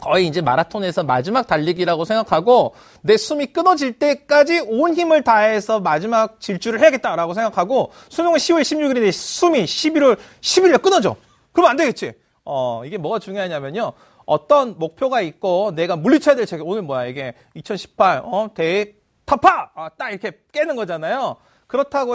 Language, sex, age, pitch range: Korean, male, 30-49, 180-275 Hz